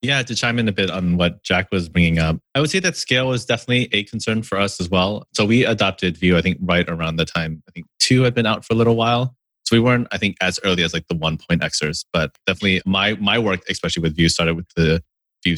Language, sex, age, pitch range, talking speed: English, male, 30-49, 85-110 Hz, 270 wpm